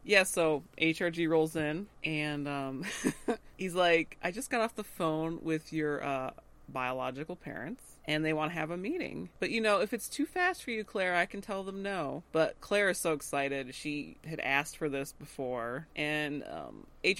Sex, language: female, English